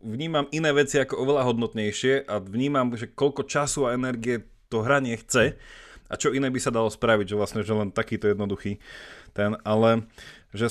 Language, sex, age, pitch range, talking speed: Slovak, male, 20-39, 100-125 Hz, 180 wpm